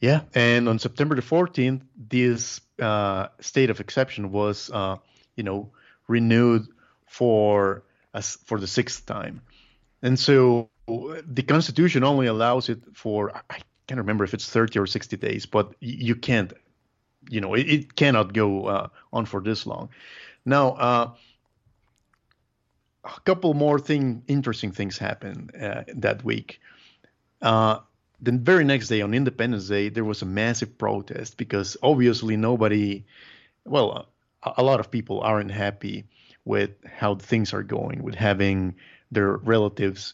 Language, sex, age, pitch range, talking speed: English, male, 50-69, 105-125 Hz, 145 wpm